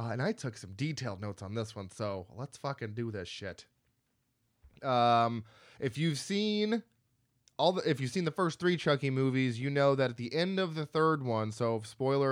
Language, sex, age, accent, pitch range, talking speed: English, male, 20-39, American, 110-140 Hz, 205 wpm